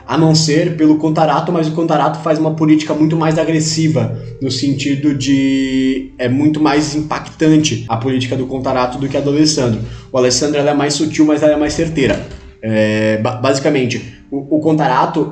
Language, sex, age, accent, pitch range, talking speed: Portuguese, male, 20-39, Brazilian, 130-160 Hz, 180 wpm